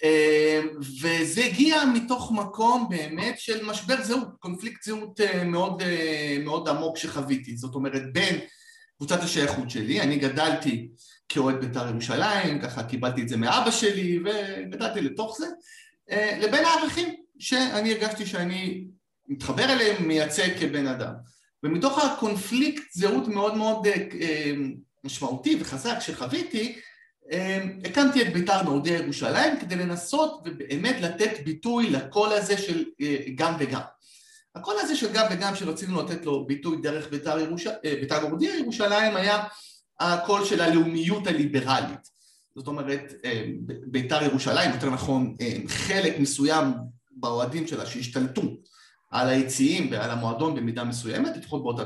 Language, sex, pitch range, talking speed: Hebrew, male, 140-220 Hz, 135 wpm